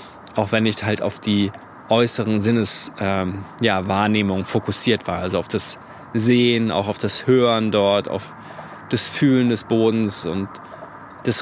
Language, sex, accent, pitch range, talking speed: German, male, German, 105-125 Hz, 140 wpm